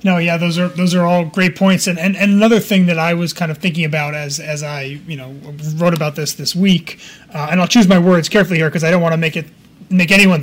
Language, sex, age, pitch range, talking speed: English, male, 30-49, 155-185 Hz, 275 wpm